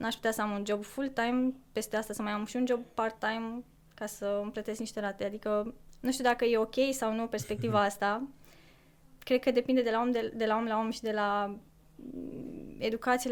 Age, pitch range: 20-39, 210-240 Hz